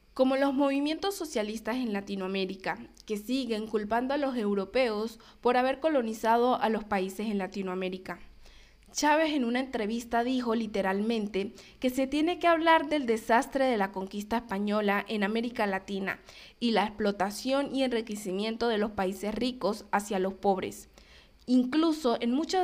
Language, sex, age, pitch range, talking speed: Spanish, female, 20-39, 205-260 Hz, 145 wpm